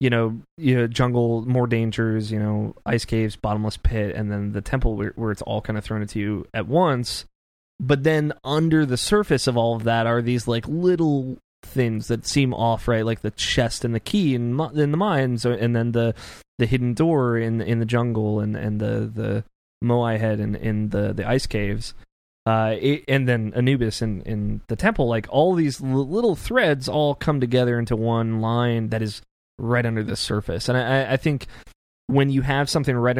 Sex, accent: male, American